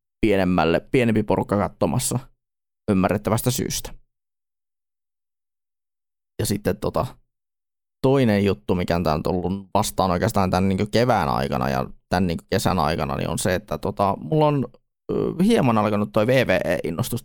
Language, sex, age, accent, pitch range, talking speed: Finnish, male, 20-39, native, 90-120 Hz, 120 wpm